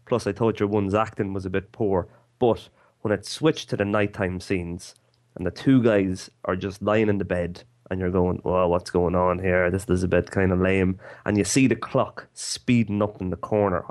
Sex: male